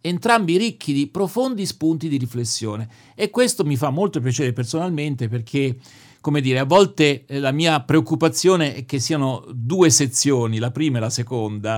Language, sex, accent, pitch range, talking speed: Italian, male, native, 125-160 Hz, 165 wpm